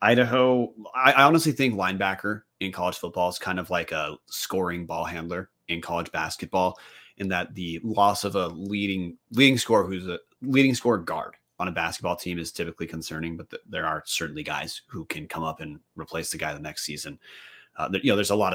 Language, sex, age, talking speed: English, male, 30-49, 200 wpm